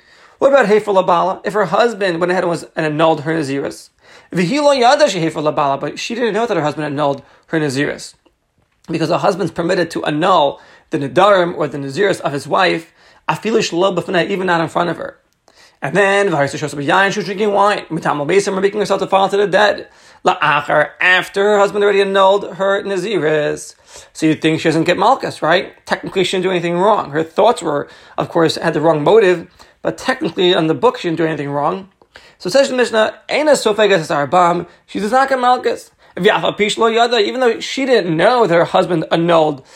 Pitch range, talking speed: 165-205 Hz, 185 wpm